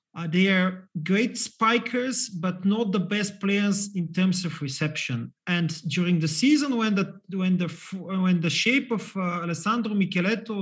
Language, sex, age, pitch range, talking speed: English, male, 40-59, 170-215 Hz, 165 wpm